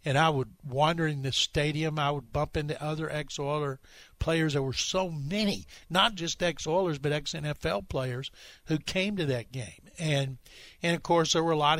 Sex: male